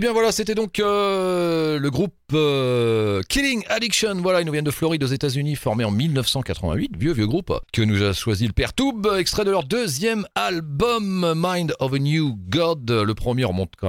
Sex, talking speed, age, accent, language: male, 205 wpm, 40-59, French, French